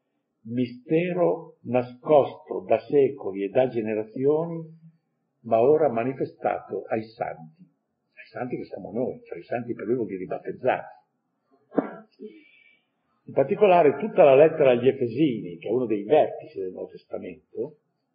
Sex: male